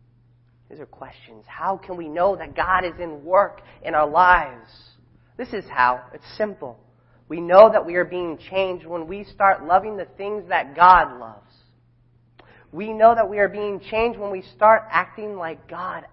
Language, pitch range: English, 120-175 Hz